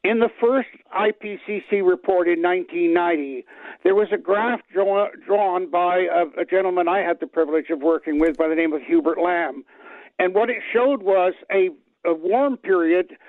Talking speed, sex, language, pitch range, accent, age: 170 wpm, male, English, 175-230 Hz, American, 60-79